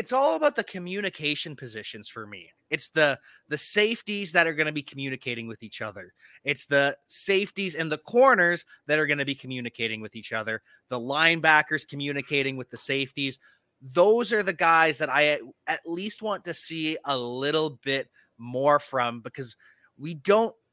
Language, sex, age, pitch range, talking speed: English, male, 20-39, 130-170 Hz, 175 wpm